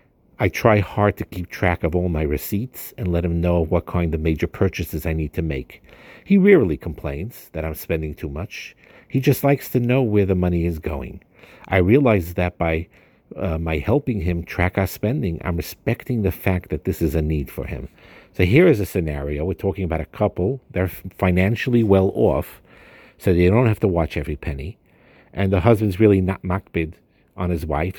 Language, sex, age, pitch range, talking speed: English, male, 50-69, 80-100 Hz, 200 wpm